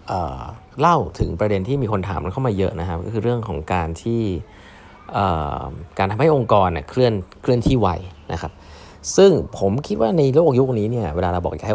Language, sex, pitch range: Thai, male, 90-120 Hz